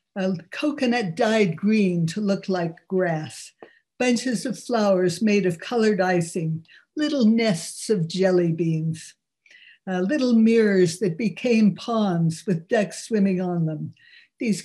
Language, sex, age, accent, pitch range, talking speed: English, female, 60-79, American, 180-225 Hz, 135 wpm